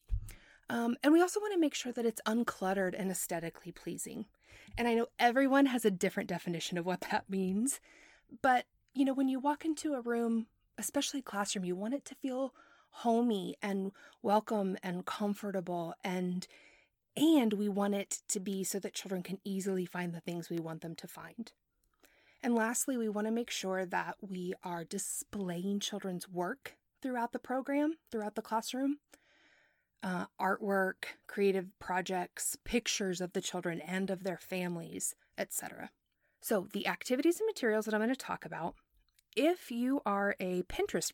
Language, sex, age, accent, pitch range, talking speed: English, female, 30-49, American, 185-245 Hz, 170 wpm